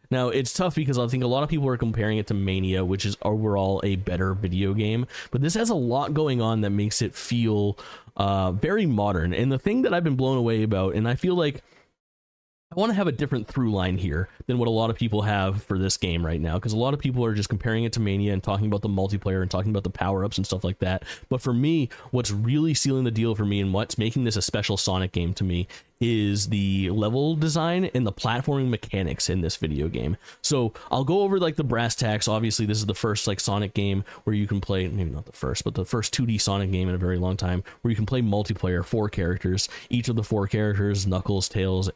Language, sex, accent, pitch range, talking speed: English, male, American, 95-120 Hz, 250 wpm